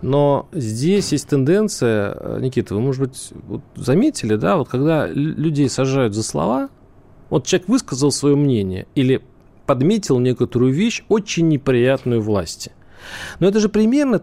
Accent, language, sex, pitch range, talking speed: native, Russian, male, 130-185 Hz, 135 wpm